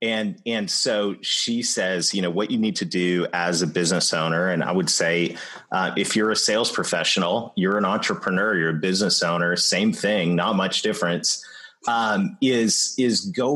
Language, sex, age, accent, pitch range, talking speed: English, male, 30-49, American, 95-140 Hz, 185 wpm